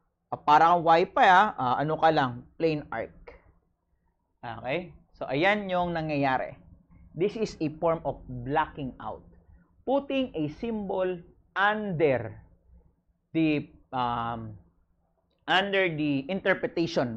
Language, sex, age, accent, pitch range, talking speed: English, male, 40-59, Filipino, 130-195 Hz, 110 wpm